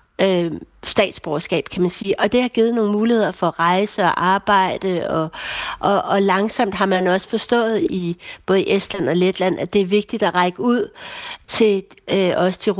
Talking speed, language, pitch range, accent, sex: 185 wpm, Danish, 180-215 Hz, native, female